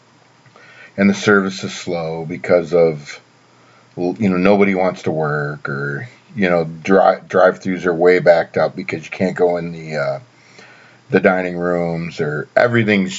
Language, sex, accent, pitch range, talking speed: English, male, American, 90-120 Hz, 155 wpm